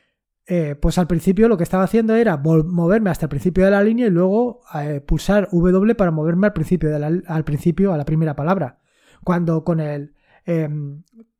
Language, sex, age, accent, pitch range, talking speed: Spanish, male, 20-39, Spanish, 165-205 Hz, 195 wpm